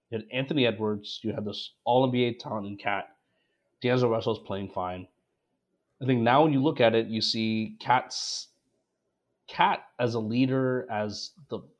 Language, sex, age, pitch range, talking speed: English, male, 30-49, 105-130 Hz, 170 wpm